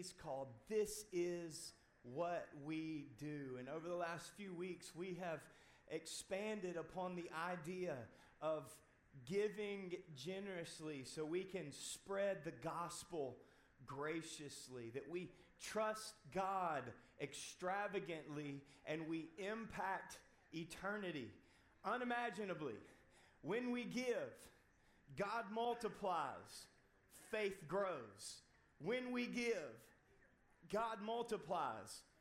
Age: 30-49